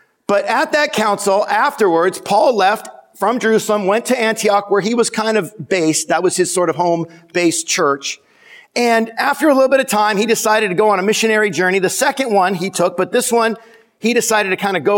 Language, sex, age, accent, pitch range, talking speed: English, male, 50-69, American, 175-230 Hz, 215 wpm